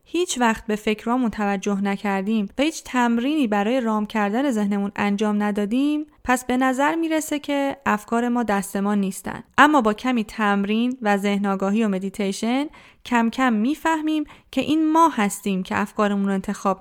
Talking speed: 155 wpm